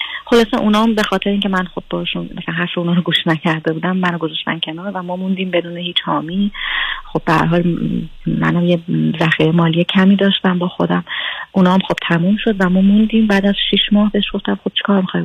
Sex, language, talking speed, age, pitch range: female, Persian, 205 wpm, 30-49, 170-205 Hz